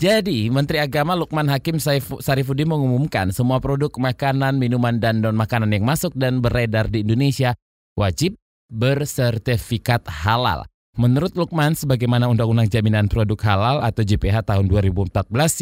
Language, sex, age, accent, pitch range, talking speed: Indonesian, male, 20-39, native, 110-140 Hz, 130 wpm